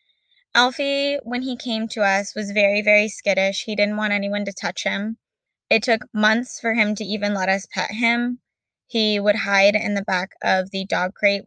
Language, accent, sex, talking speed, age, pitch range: English, American, female, 200 wpm, 10-29, 195-230 Hz